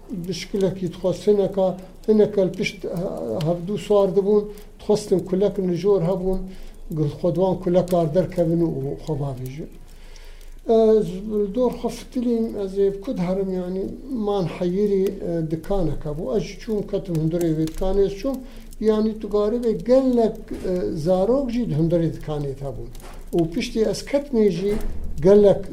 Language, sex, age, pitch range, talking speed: Turkish, male, 60-79, 165-205 Hz, 95 wpm